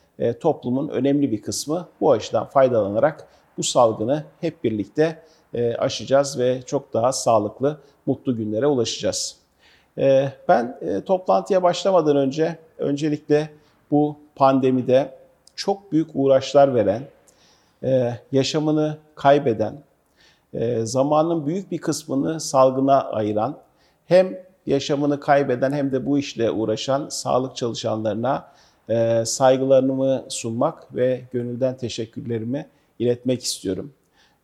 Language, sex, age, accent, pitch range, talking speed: Turkish, male, 50-69, native, 115-145 Hz, 95 wpm